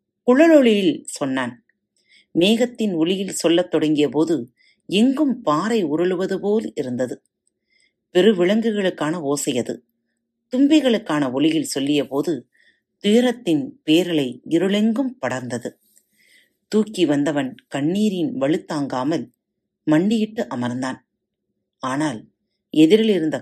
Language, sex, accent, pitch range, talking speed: Tamil, female, native, 150-230 Hz, 75 wpm